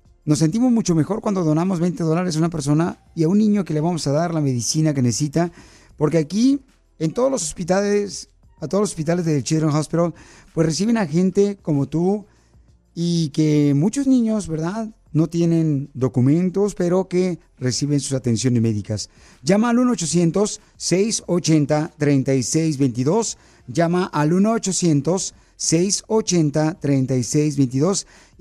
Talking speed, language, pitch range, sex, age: 135 wpm, Spanish, 150-195 Hz, male, 40-59